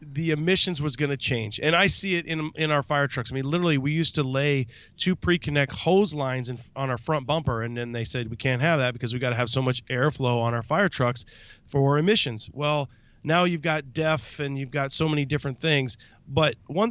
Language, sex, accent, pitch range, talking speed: English, male, American, 125-160 Hz, 240 wpm